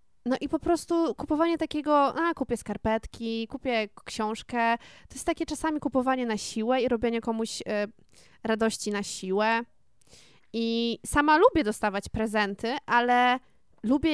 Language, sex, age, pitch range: Polish, female, 20-39, 225-275 Hz